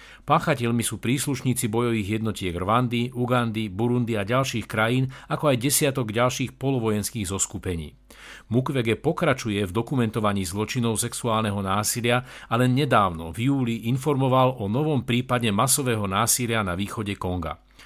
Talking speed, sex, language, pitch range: 125 wpm, male, Slovak, 105-130 Hz